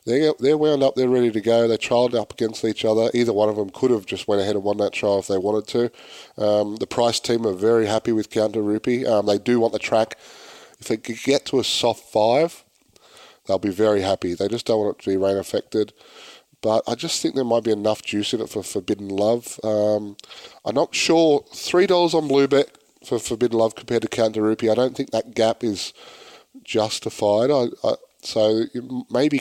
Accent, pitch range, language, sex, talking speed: Australian, 105-120 Hz, English, male, 220 wpm